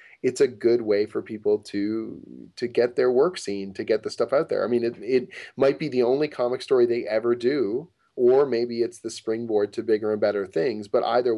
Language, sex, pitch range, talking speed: English, male, 105-145 Hz, 225 wpm